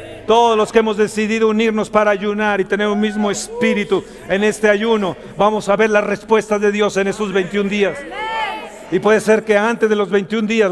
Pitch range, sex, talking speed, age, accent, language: 210-340 Hz, male, 200 wpm, 50-69, Mexican, Spanish